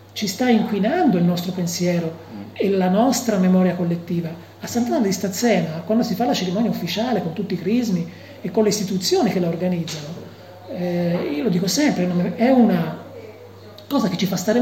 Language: Italian